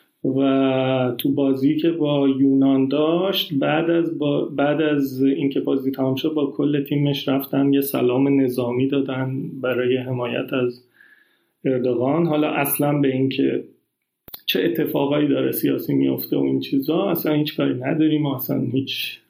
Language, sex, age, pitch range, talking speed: Persian, male, 40-59, 130-170 Hz, 140 wpm